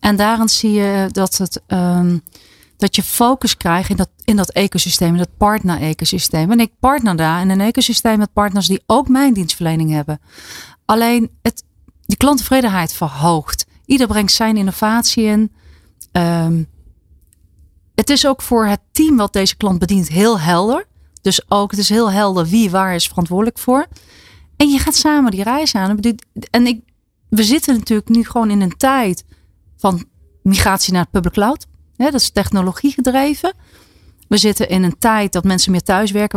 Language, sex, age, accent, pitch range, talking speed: Dutch, female, 30-49, Dutch, 180-235 Hz, 160 wpm